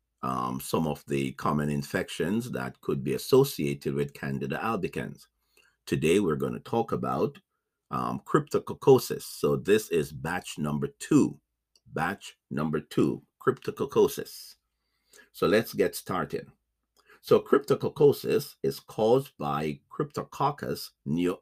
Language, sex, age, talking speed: English, male, 50-69, 120 wpm